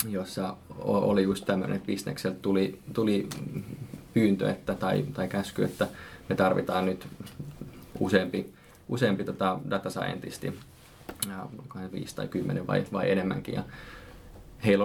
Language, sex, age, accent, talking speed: Finnish, male, 20-39, native, 115 wpm